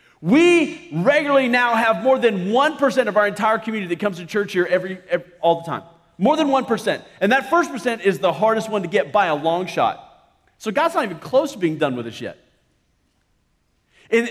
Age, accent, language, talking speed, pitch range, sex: 40-59, American, English, 220 wpm, 185-270 Hz, male